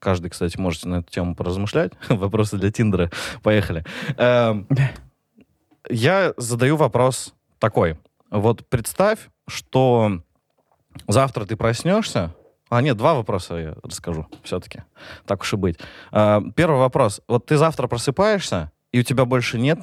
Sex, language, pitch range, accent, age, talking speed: male, Russian, 95-125 Hz, native, 30-49, 130 wpm